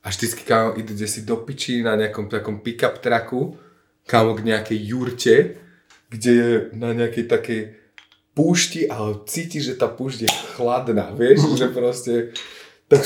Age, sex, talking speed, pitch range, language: 20-39, male, 145 wpm, 105-125 Hz, Slovak